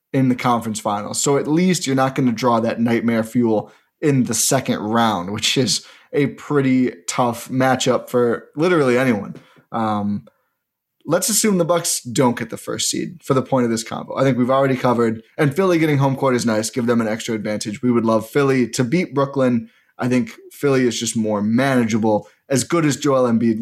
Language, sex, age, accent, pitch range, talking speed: English, male, 20-39, American, 120-145 Hz, 205 wpm